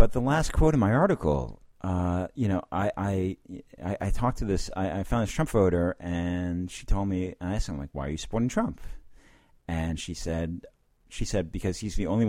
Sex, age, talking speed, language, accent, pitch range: male, 40-59, 220 wpm, English, American, 85-105 Hz